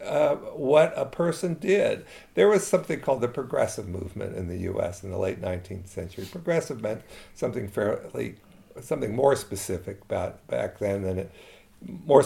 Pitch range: 95-130 Hz